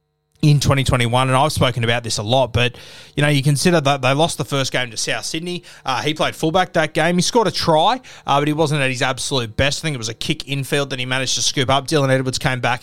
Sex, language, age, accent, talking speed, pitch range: male, English, 20-39, Australian, 270 wpm, 125-150 Hz